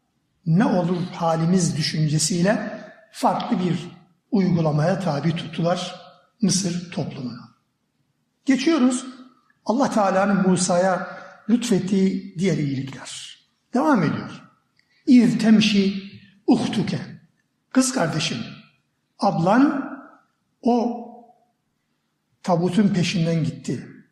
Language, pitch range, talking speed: Turkish, 170-225 Hz, 65 wpm